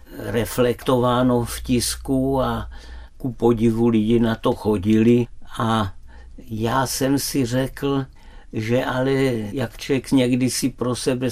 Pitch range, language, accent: 115-130 Hz, Czech, native